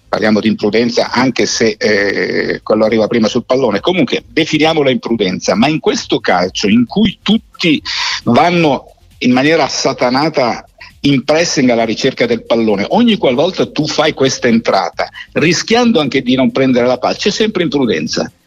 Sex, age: male, 50-69